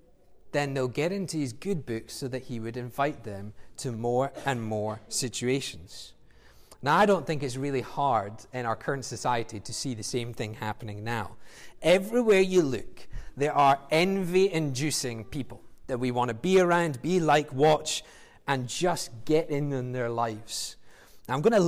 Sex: male